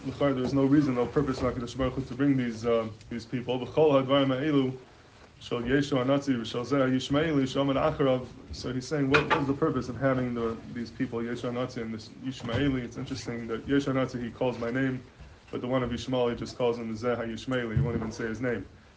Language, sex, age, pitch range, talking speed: English, male, 20-39, 115-135 Hz, 165 wpm